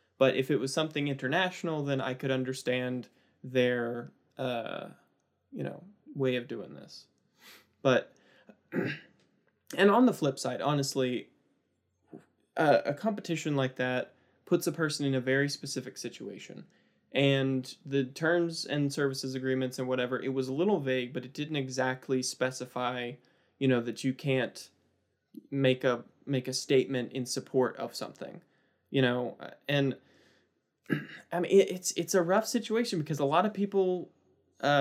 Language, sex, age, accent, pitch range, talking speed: English, male, 20-39, American, 130-150 Hz, 150 wpm